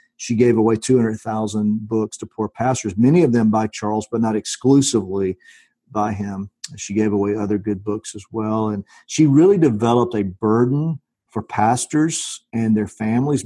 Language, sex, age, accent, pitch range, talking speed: English, male, 50-69, American, 105-125 Hz, 165 wpm